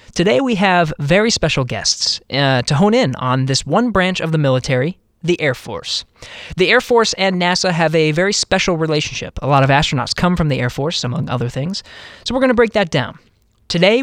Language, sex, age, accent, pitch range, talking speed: English, male, 20-39, American, 140-190 Hz, 215 wpm